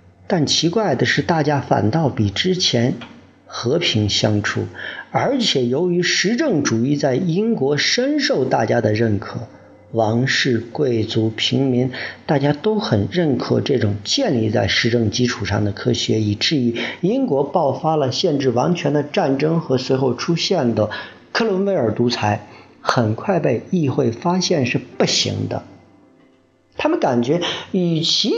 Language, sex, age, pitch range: Chinese, male, 50-69, 110-170 Hz